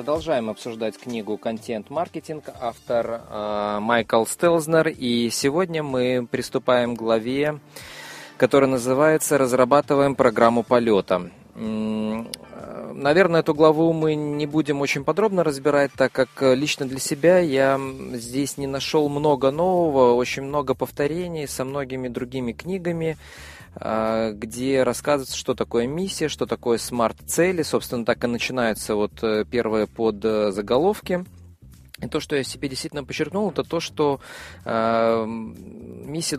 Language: Russian